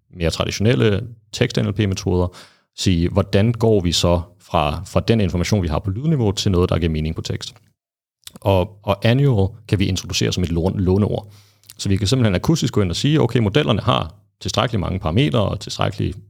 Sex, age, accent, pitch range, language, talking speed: male, 30-49, native, 90-115 Hz, Danish, 180 wpm